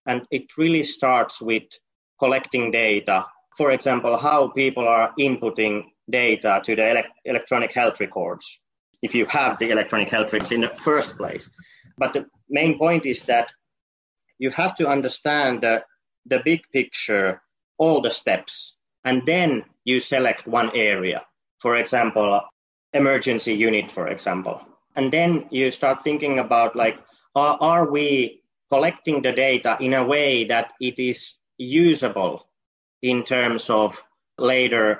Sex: male